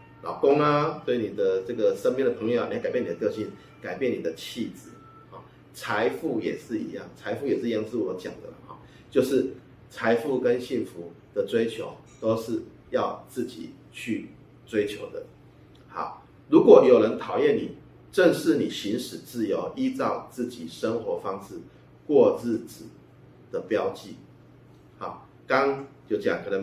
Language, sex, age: Chinese, male, 30-49